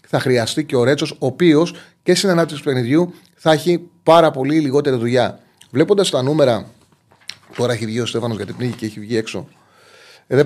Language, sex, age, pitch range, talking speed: Greek, male, 30-49, 120-160 Hz, 195 wpm